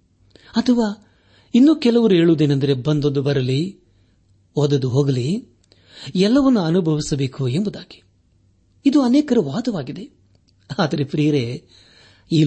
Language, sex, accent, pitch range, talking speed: Kannada, male, native, 100-165 Hz, 80 wpm